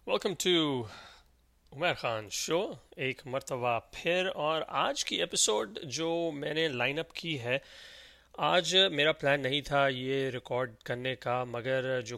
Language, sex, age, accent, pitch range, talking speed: English, male, 30-49, Indian, 130-155 Hz, 135 wpm